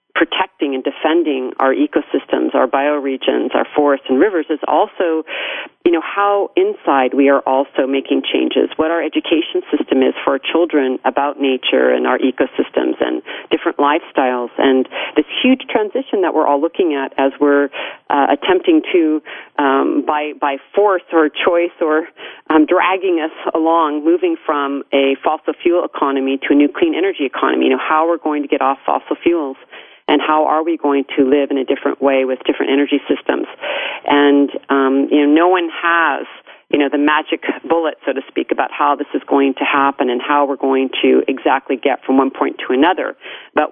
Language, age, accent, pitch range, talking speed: English, 40-59, American, 140-175 Hz, 185 wpm